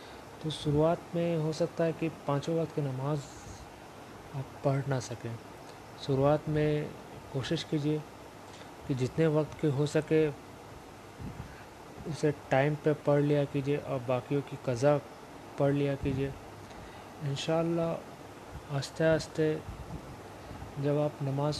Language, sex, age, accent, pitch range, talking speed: Hindi, male, 30-49, native, 130-155 Hz, 120 wpm